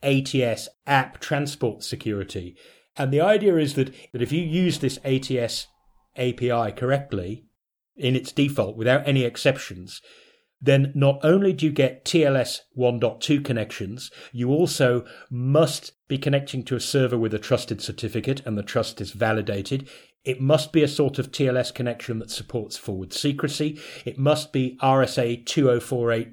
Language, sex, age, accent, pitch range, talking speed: English, male, 40-59, British, 115-140 Hz, 150 wpm